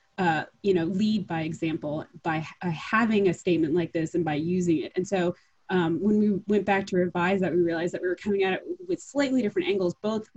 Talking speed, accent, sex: 230 wpm, American, female